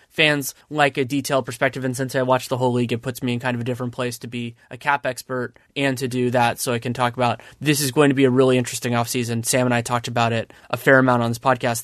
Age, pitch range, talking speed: 20-39, 120-140 Hz, 285 wpm